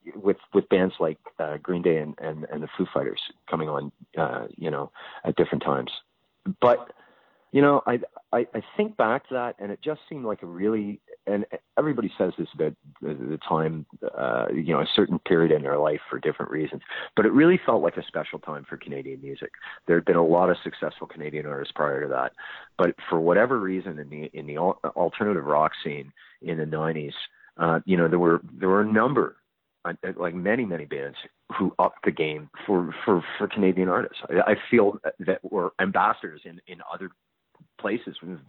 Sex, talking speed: male, 195 wpm